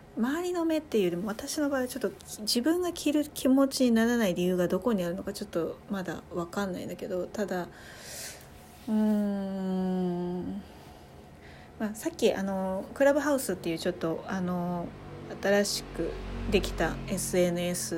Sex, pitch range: female, 170-230 Hz